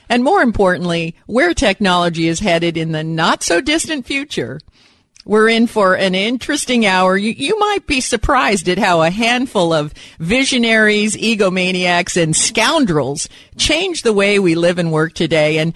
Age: 50-69